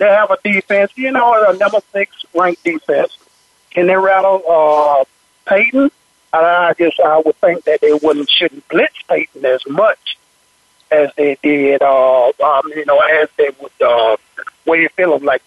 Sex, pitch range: male, 155-225 Hz